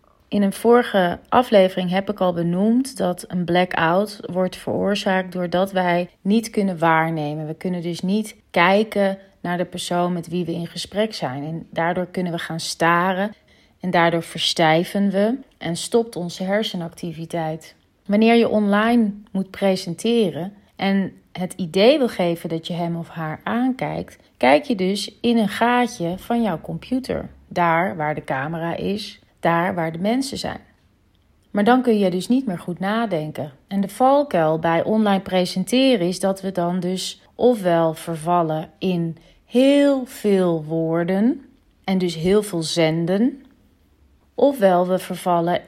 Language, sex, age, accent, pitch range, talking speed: Dutch, female, 30-49, Dutch, 170-205 Hz, 150 wpm